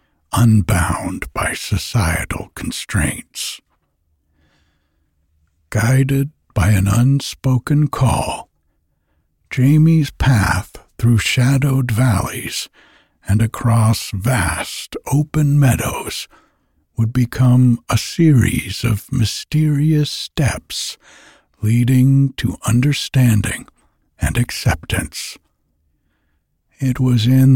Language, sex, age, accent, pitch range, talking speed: English, male, 60-79, American, 90-135 Hz, 75 wpm